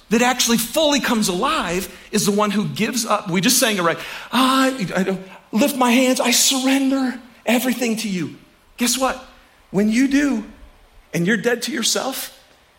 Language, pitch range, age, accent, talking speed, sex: English, 180-265 Hz, 40-59, American, 170 wpm, male